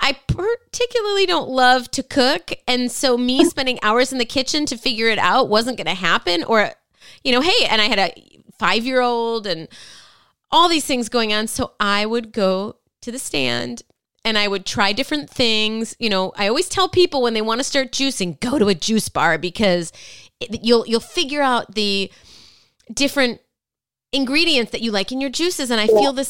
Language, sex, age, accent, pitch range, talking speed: English, female, 30-49, American, 195-255 Hz, 195 wpm